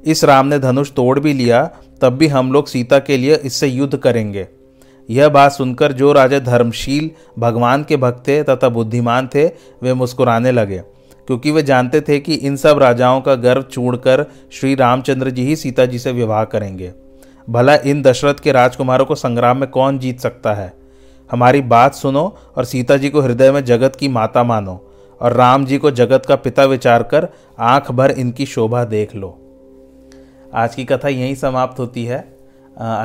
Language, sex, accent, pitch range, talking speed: Hindi, male, native, 120-135 Hz, 185 wpm